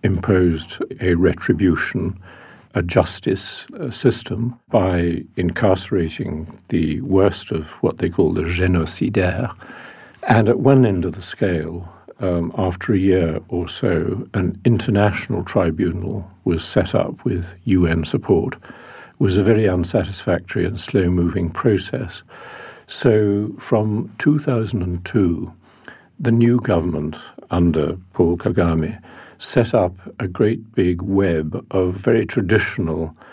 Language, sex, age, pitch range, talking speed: English, male, 60-79, 85-110 Hz, 115 wpm